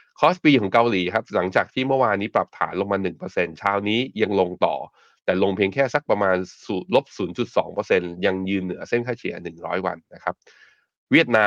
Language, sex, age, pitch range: Thai, male, 20-39, 95-120 Hz